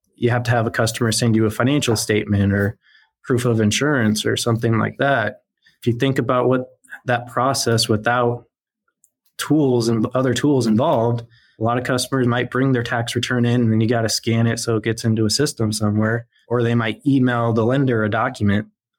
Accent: American